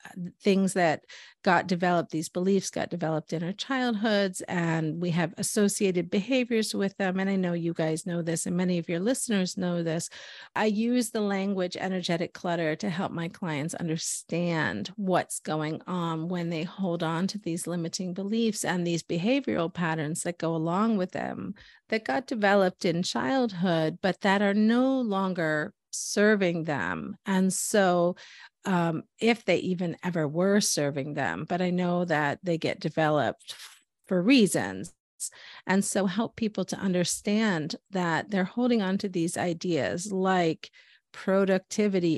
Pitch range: 170-200 Hz